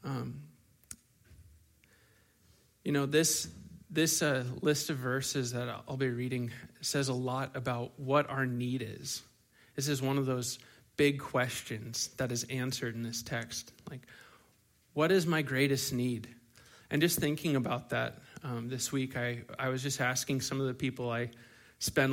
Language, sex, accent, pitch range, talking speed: English, male, American, 120-170 Hz, 160 wpm